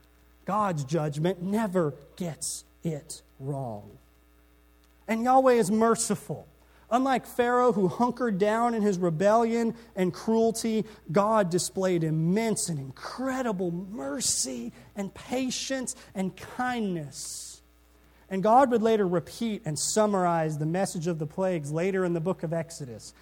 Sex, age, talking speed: male, 30-49, 125 wpm